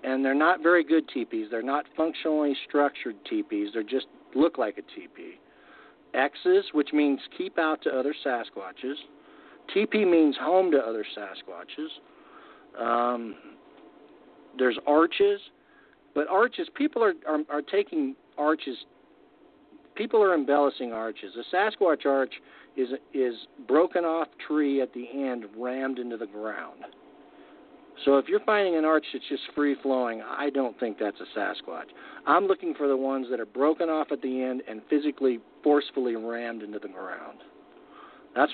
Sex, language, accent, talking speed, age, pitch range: male, English, American, 155 wpm, 50-69, 130-180 Hz